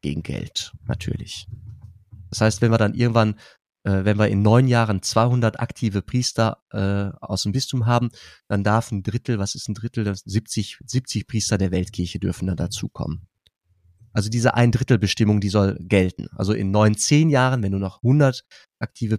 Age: 30-49